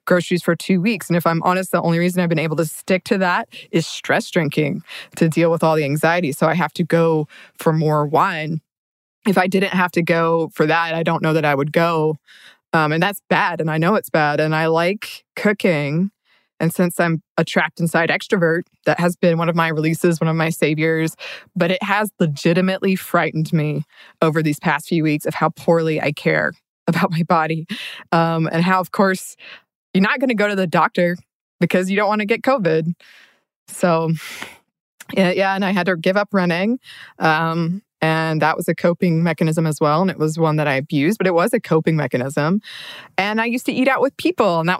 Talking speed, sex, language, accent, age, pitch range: 215 wpm, female, English, American, 20-39, 160-190 Hz